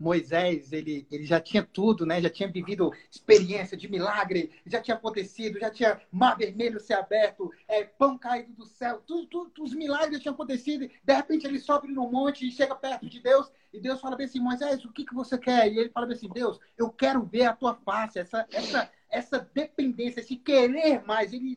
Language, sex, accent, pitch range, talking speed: Portuguese, male, Brazilian, 210-260 Hz, 215 wpm